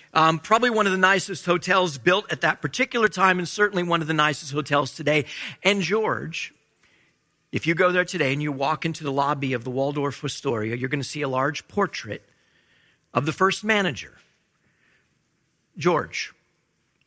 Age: 50-69